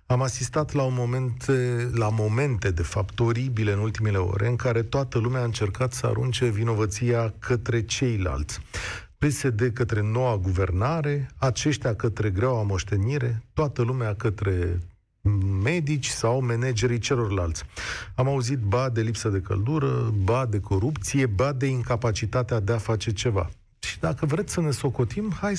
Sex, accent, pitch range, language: male, native, 110-140 Hz, Romanian